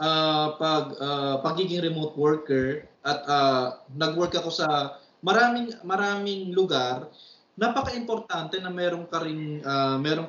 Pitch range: 145-190 Hz